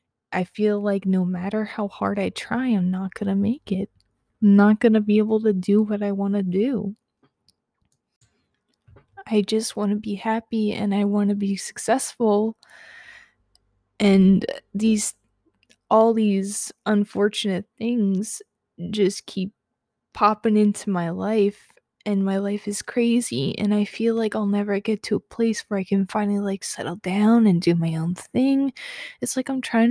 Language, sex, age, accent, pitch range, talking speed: English, female, 20-39, American, 195-220 Hz, 165 wpm